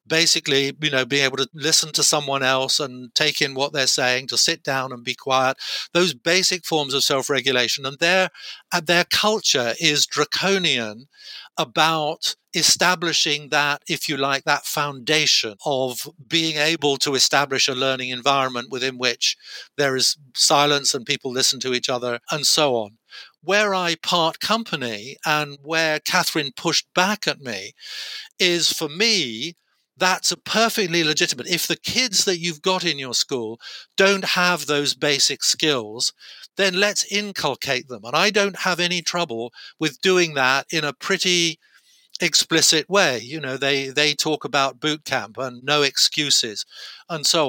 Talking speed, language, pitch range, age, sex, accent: 160 wpm, English, 135-175 Hz, 60-79, male, British